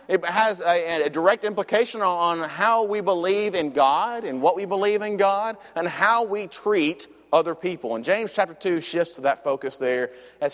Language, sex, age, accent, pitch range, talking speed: English, male, 30-49, American, 155-210 Hz, 195 wpm